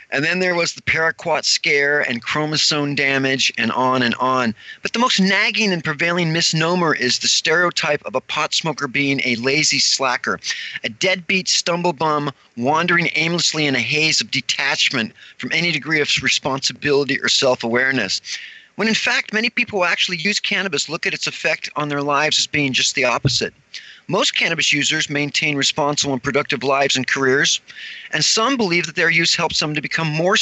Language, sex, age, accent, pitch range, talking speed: English, male, 40-59, American, 140-190 Hz, 180 wpm